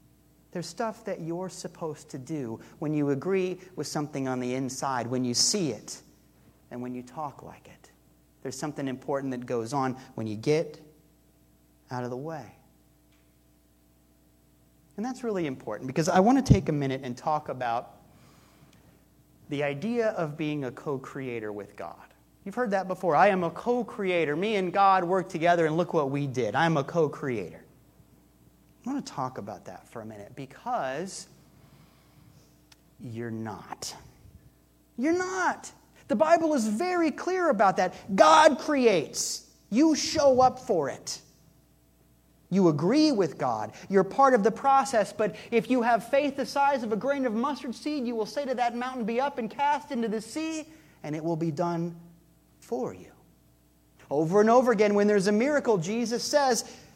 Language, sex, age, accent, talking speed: English, male, 30-49, American, 170 wpm